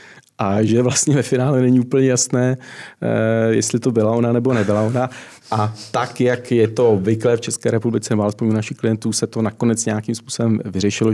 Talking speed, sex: 185 wpm, male